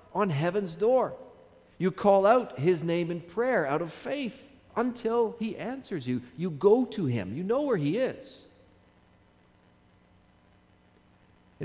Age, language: 50-69, English